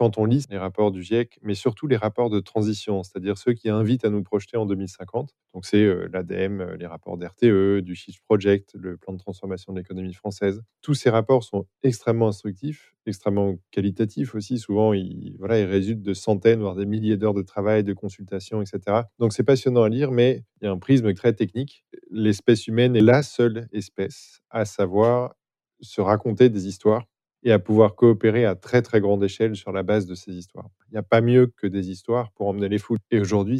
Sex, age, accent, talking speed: male, 20-39, French, 210 wpm